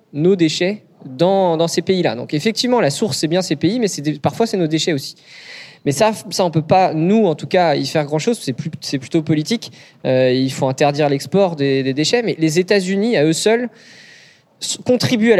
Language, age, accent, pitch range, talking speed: French, 20-39, French, 155-210 Hz, 230 wpm